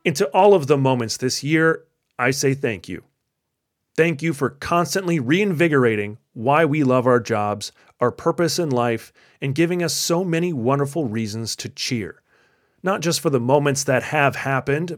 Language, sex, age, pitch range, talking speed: English, male, 30-49, 125-165 Hz, 170 wpm